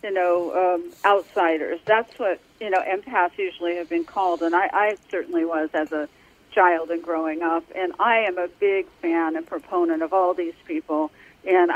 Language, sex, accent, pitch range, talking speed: English, female, American, 175-230 Hz, 190 wpm